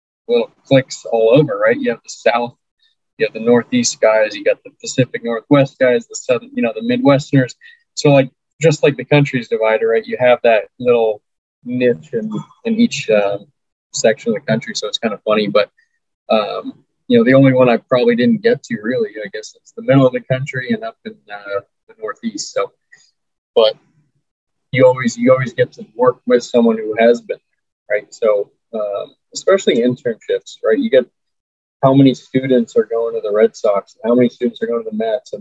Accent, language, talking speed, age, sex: American, English, 205 wpm, 20-39, male